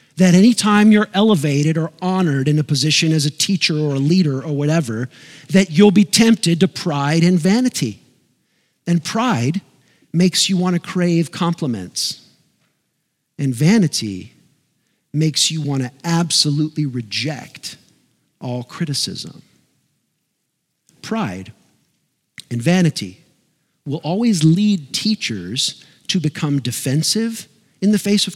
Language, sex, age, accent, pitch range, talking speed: English, male, 50-69, American, 145-185 Hz, 120 wpm